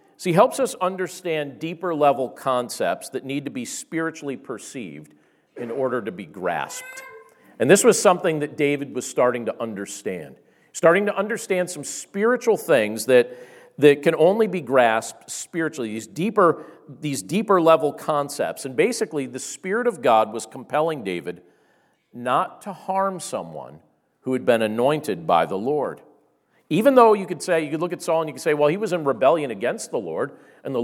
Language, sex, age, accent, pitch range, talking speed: English, male, 50-69, American, 115-170 Hz, 180 wpm